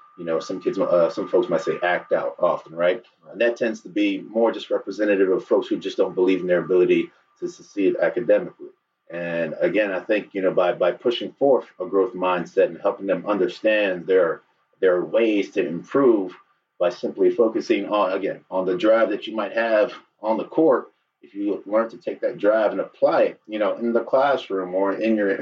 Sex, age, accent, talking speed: male, 30-49, American, 210 wpm